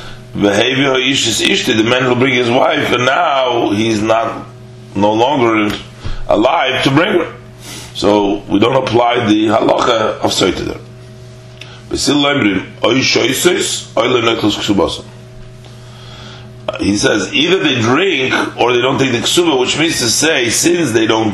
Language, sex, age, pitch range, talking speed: English, male, 40-59, 115-125 Hz, 120 wpm